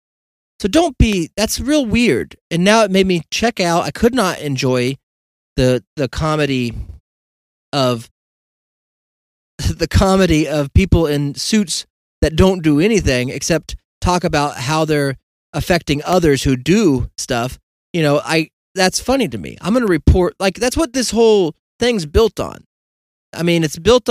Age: 30-49